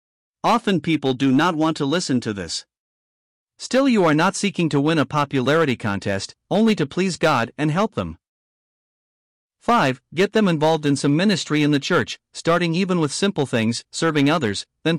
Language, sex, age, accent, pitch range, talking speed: English, male, 50-69, American, 130-175 Hz, 175 wpm